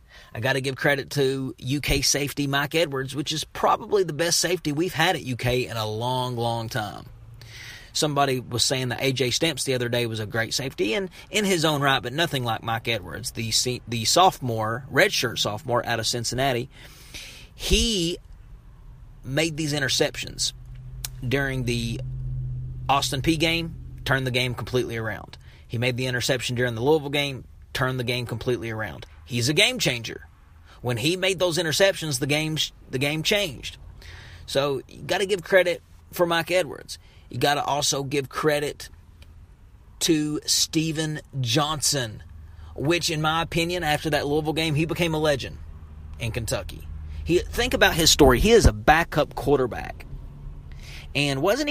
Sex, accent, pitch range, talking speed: male, American, 115-155 Hz, 165 wpm